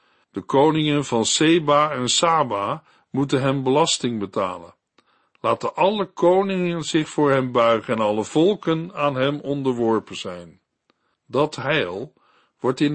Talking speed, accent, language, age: 130 wpm, Dutch, Dutch, 50-69